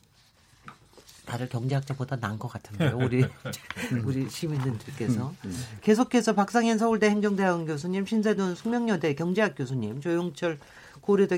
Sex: male